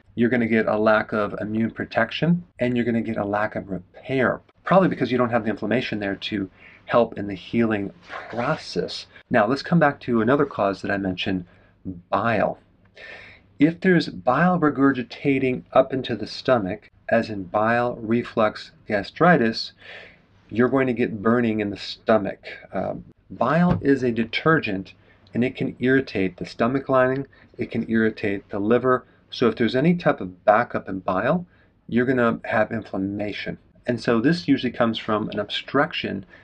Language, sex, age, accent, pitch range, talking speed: English, male, 40-59, American, 100-125 Hz, 170 wpm